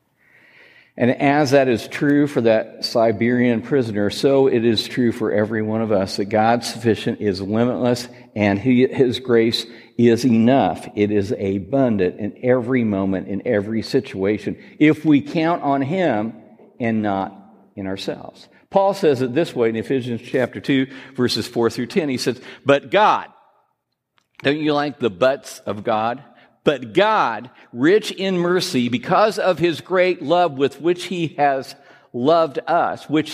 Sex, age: male, 60-79